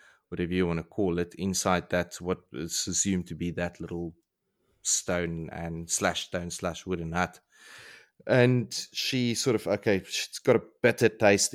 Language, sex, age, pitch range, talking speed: English, male, 30-49, 85-100 Hz, 165 wpm